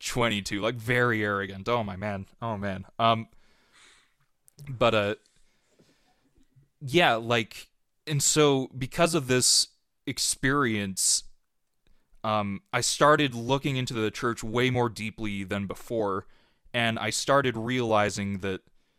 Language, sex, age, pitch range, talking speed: English, male, 20-39, 105-130 Hz, 115 wpm